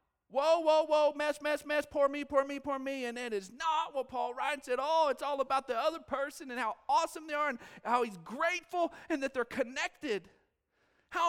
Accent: American